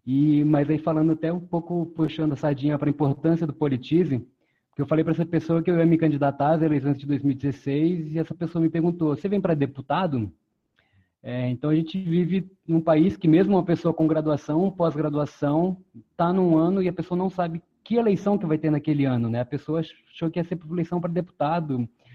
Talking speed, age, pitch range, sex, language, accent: 215 wpm, 20-39, 130-165 Hz, male, Portuguese, Brazilian